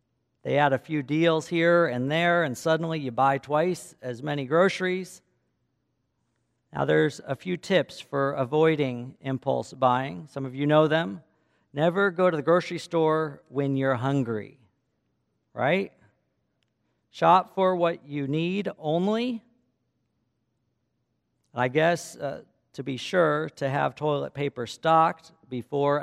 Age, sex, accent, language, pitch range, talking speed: 50-69, male, American, English, 125-165 Hz, 135 wpm